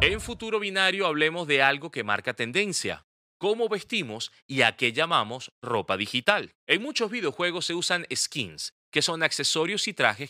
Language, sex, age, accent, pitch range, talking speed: Spanish, male, 30-49, Venezuelan, 115-175 Hz, 165 wpm